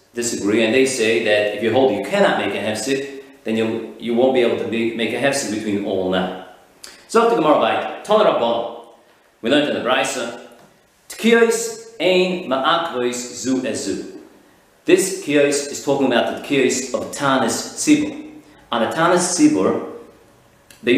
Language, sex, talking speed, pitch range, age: English, male, 170 wpm, 120-185 Hz, 40-59